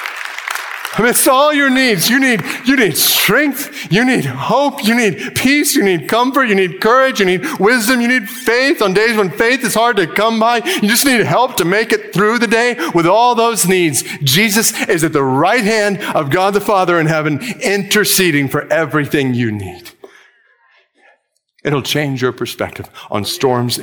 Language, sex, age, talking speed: English, male, 50-69, 185 wpm